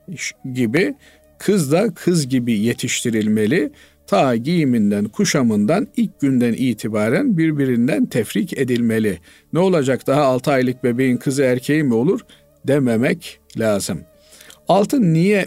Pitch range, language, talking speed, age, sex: 110-170 Hz, Turkish, 115 wpm, 50-69, male